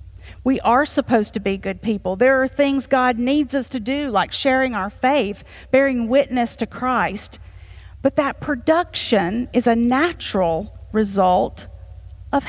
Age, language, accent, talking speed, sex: 40-59, English, American, 150 wpm, female